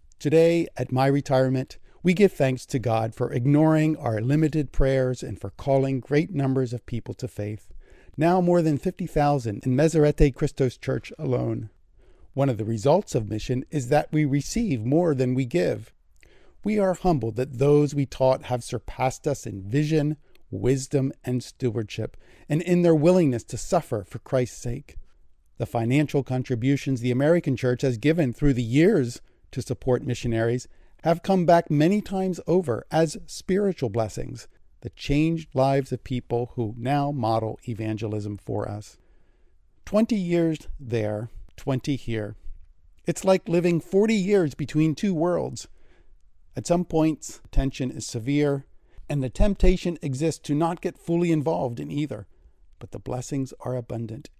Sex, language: male, English